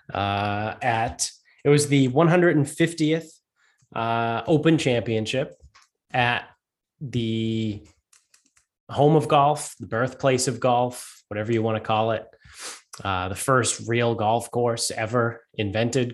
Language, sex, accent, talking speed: English, male, American, 120 wpm